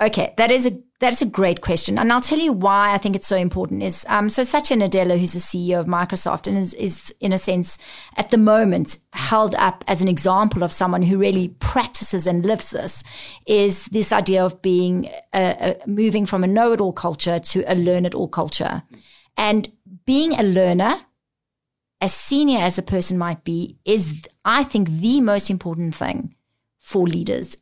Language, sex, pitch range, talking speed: English, female, 180-230 Hz, 190 wpm